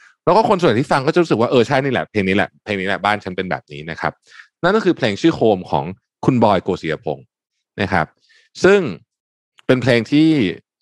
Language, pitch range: Thai, 95-130 Hz